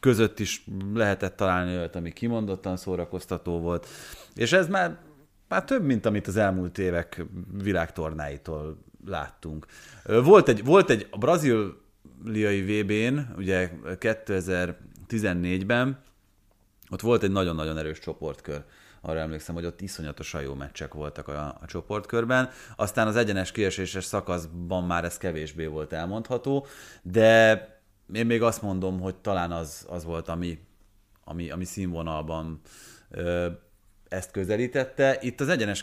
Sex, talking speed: male, 130 wpm